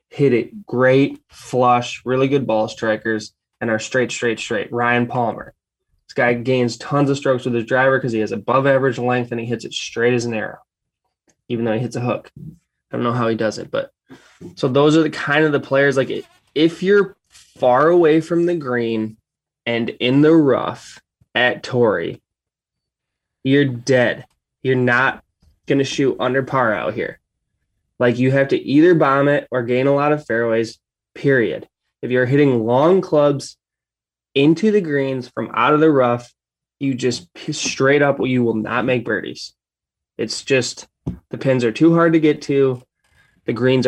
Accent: American